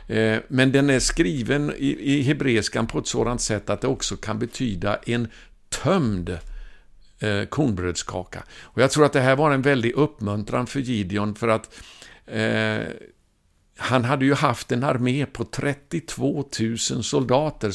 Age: 60-79